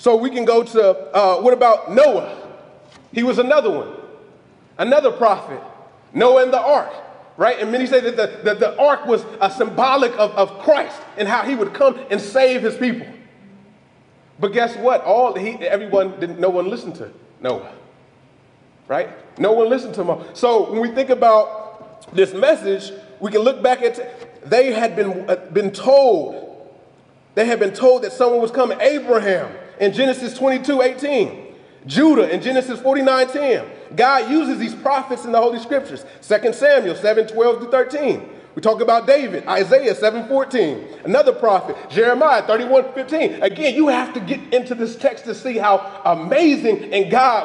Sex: male